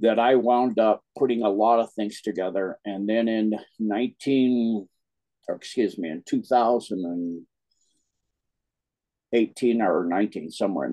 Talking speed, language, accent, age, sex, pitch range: 125 wpm, English, American, 60-79, male, 100-120 Hz